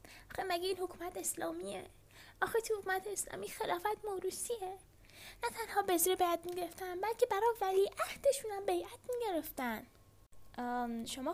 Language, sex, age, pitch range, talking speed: Persian, female, 10-29, 305-430 Hz, 120 wpm